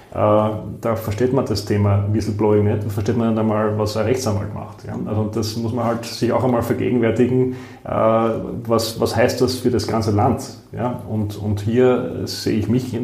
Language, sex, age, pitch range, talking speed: German, male, 30-49, 105-120 Hz, 180 wpm